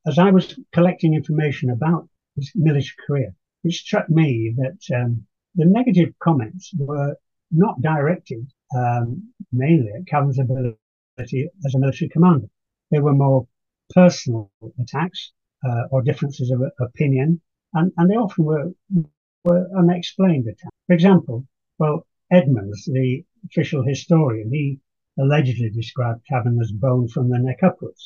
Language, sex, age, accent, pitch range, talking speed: English, male, 60-79, British, 125-170 Hz, 135 wpm